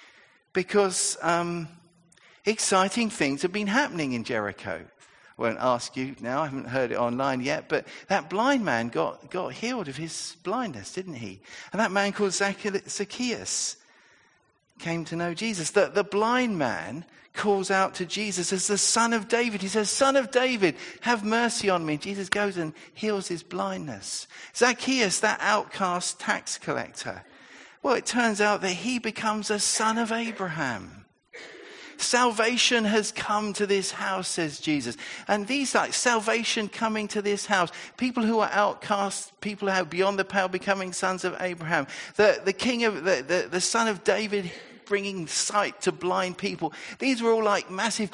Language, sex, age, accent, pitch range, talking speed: English, male, 50-69, British, 180-225 Hz, 165 wpm